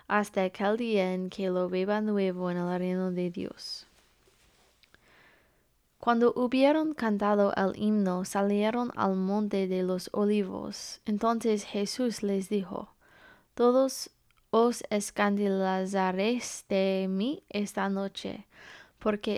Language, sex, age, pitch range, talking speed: English, female, 20-39, 200-230 Hz, 110 wpm